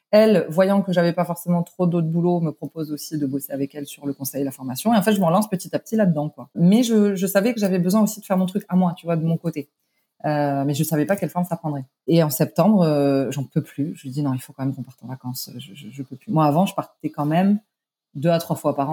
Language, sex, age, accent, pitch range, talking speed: French, female, 30-49, French, 145-185 Hz, 310 wpm